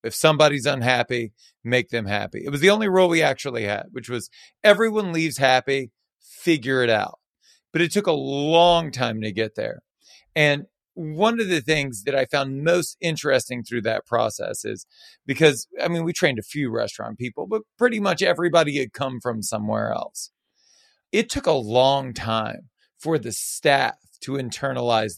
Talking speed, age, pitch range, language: 175 wpm, 40-59, 125-165 Hz, English